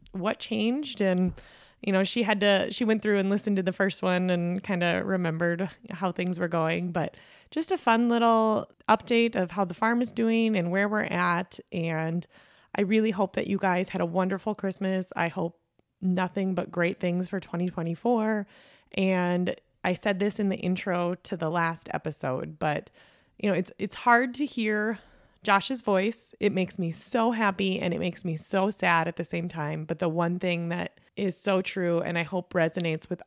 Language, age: English, 20-39